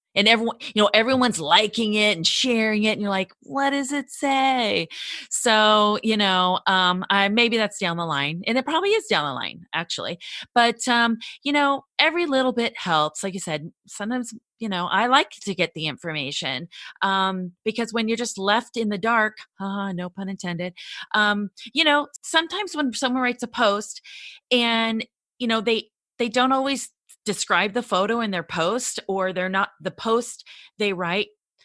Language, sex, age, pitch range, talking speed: English, female, 30-49, 185-240 Hz, 185 wpm